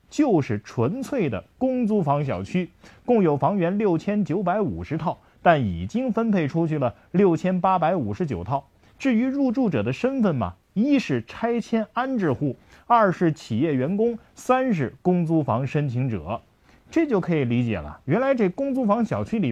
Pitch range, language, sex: 140-235 Hz, Chinese, male